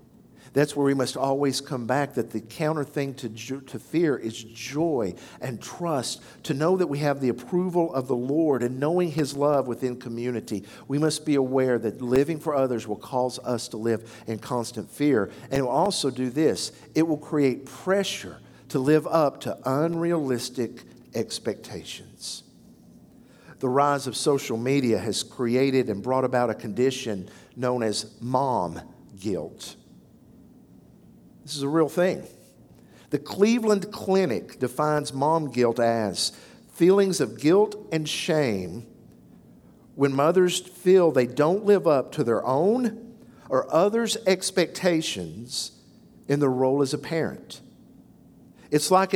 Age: 50-69